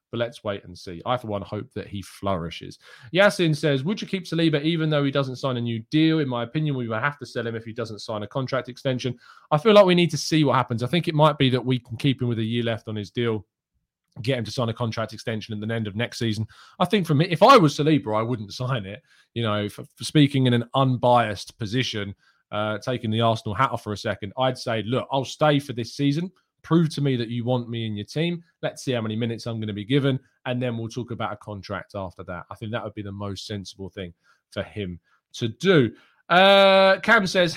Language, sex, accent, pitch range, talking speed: English, male, British, 110-145 Hz, 260 wpm